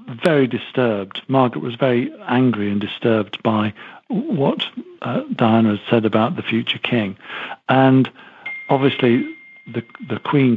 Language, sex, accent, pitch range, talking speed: English, male, British, 110-140 Hz, 130 wpm